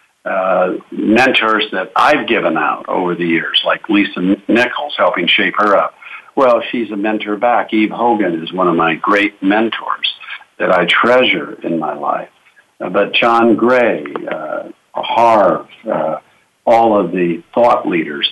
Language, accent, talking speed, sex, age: English, American, 155 wpm, male, 60-79